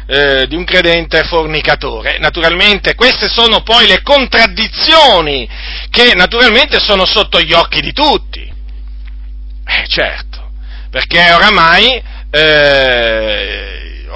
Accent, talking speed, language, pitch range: native, 100 wpm, Italian, 155-245 Hz